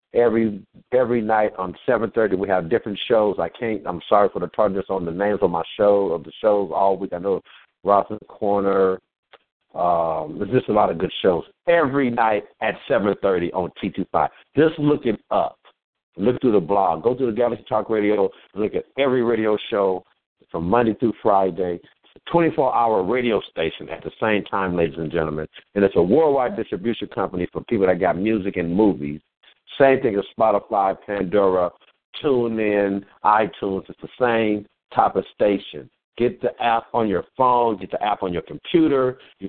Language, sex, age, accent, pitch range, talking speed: English, male, 60-79, American, 100-125 Hz, 180 wpm